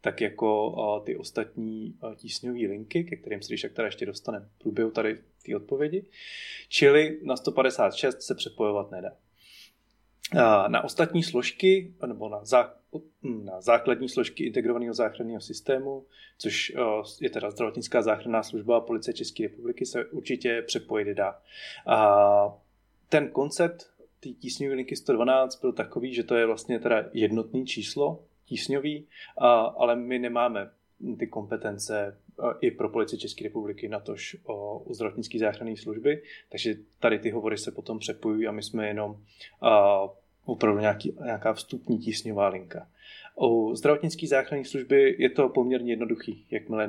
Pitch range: 105-135 Hz